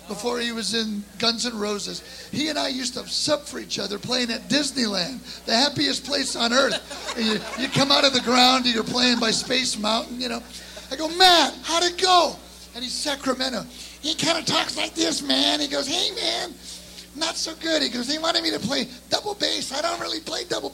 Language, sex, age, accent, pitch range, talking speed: English, male, 40-59, American, 225-280 Hz, 220 wpm